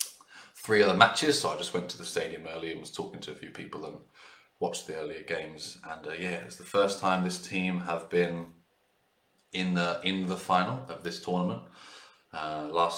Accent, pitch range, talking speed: British, 85-95 Hz, 205 wpm